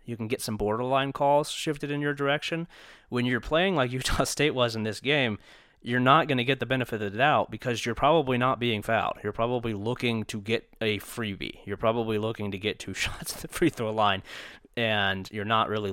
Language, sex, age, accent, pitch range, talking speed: English, male, 30-49, American, 105-125 Hz, 220 wpm